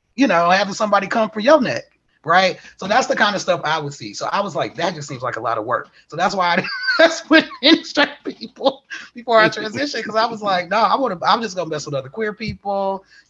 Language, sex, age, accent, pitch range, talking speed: English, male, 30-49, American, 150-220 Hz, 245 wpm